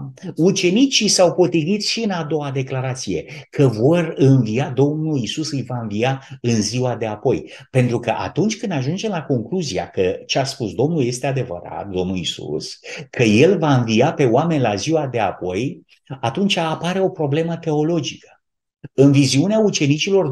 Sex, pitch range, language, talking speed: male, 125-175 Hz, Romanian, 160 wpm